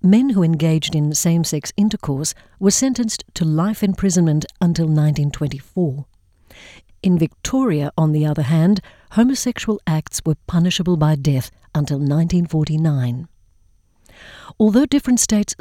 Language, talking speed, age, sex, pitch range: English, 115 wpm, 50-69, female, 145-195 Hz